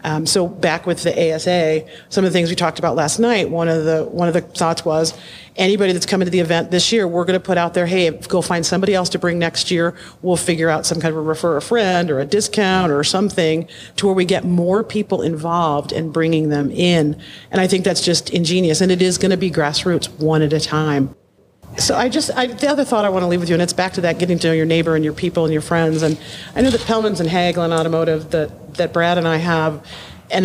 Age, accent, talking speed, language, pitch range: 40-59, American, 265 wpm, English, 160-185 Hz